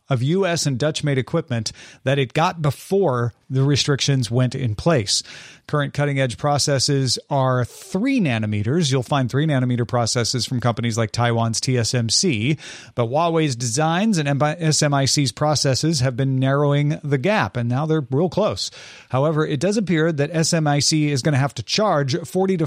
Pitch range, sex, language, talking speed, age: 125-155 Hz, male, English, 160 wpm, 40-59